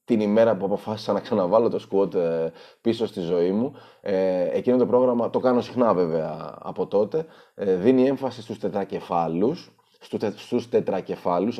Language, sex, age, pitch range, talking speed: Greek, male, 30-49, 95-135 Hz, 145 wpm